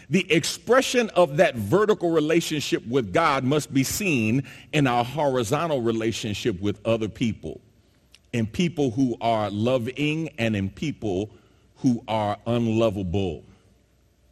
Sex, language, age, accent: male, English, 40-59, American